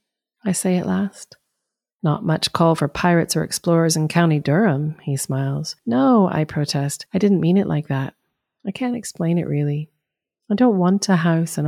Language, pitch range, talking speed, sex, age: English, 150-195 Hz, 185 wpm, female, 30-49